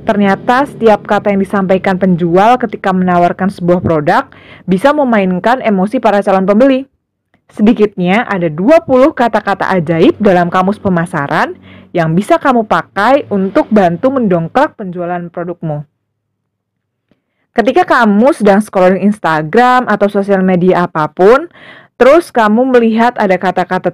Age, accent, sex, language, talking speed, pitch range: 20-39, native, female, Indonesian, 120 wpm, 175-230 Hz